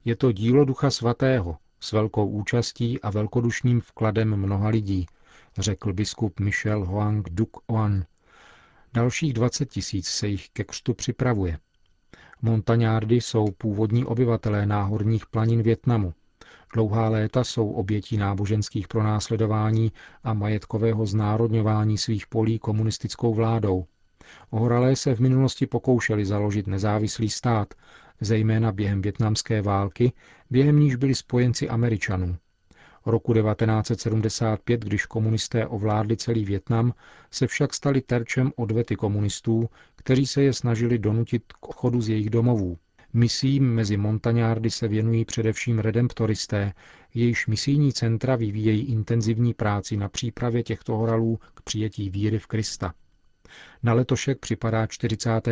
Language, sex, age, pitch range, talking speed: Czech, male, 40-59, 105-120 Hz, 120 wpm